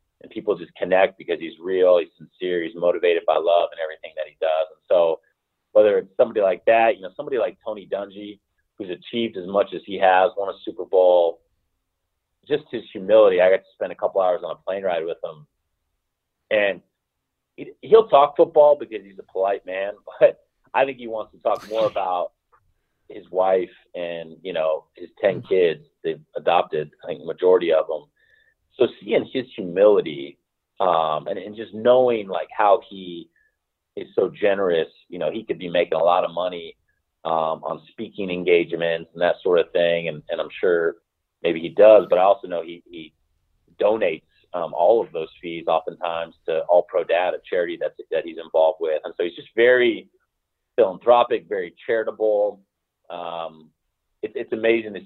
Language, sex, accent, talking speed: English, male, American, 185 wpm